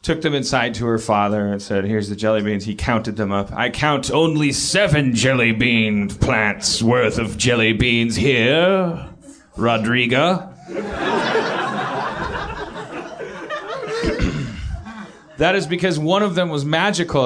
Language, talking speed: English, 130 wpm